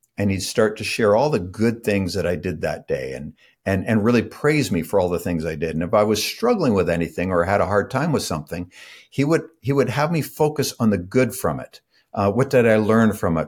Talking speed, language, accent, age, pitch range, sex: 265 wpm, English, American, 50-69, 100-125 Hz, male